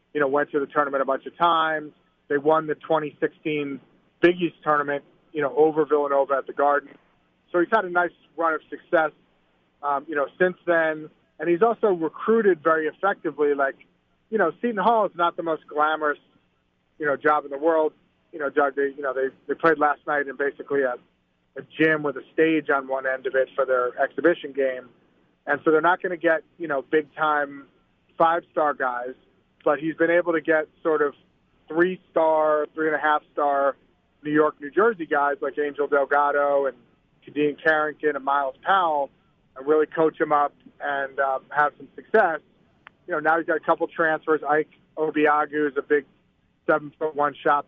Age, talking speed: 30-49, 190 wpm